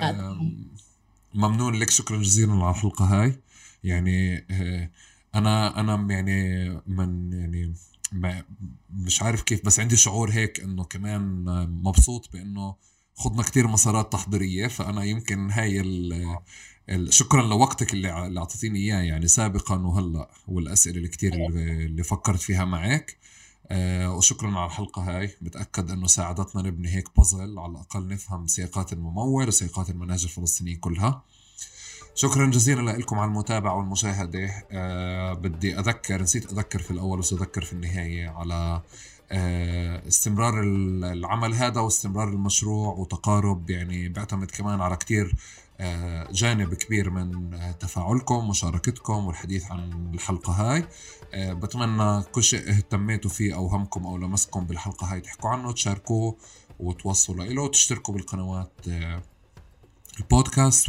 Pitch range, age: 90-105 Hz, 20-39